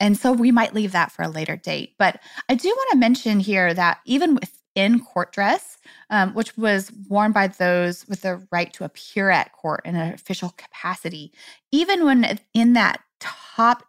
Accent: American